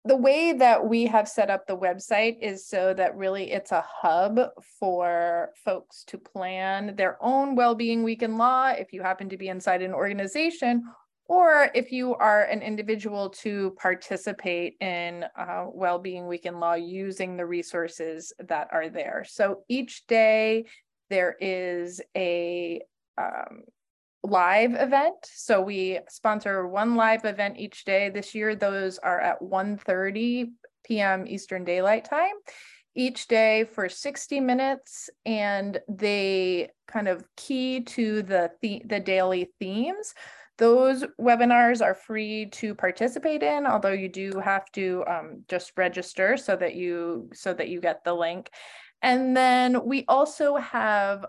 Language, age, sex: English, 20-39, female